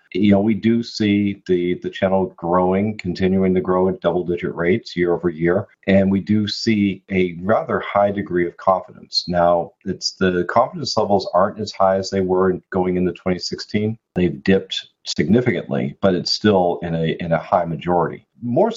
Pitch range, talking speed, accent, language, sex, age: 90-105 Hz, 175 wpm, American, English, male, 40-59